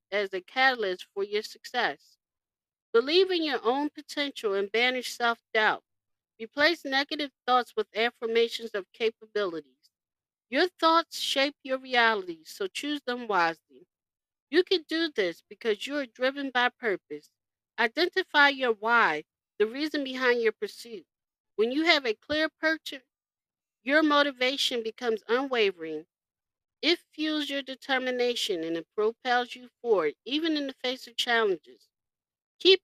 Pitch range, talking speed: 220-305 Hz, 135 wpm